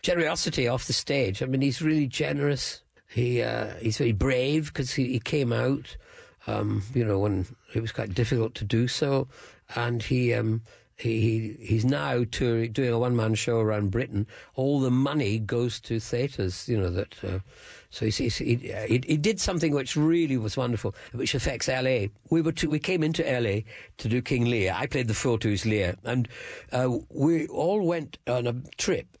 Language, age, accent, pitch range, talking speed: English, 50-69, British, 110-155 Hz, 195 wpm